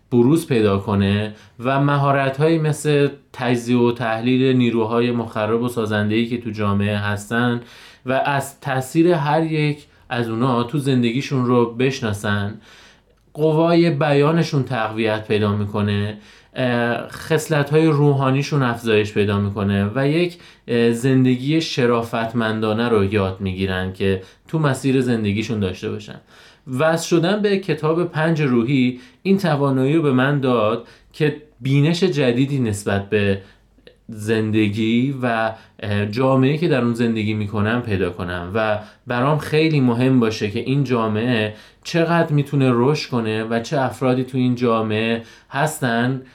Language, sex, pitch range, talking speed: Persian, male, 110-140 Hz, 125 wpm